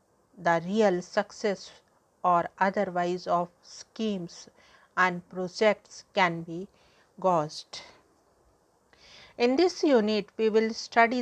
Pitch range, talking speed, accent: 180-205 Hz, 95 wpm, Indian